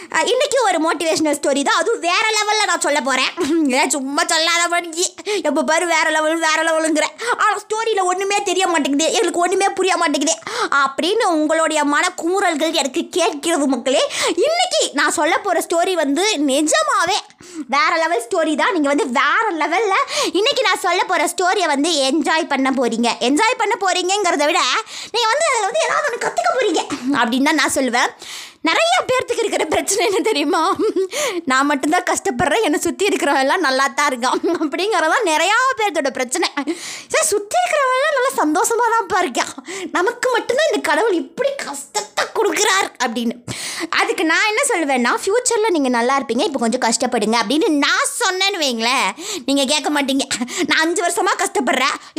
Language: Tamil